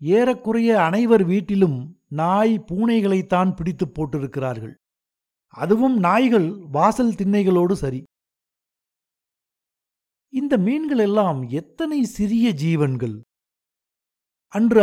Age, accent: 60-79, native